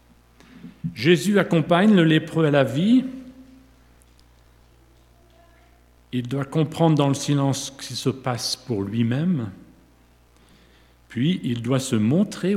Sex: male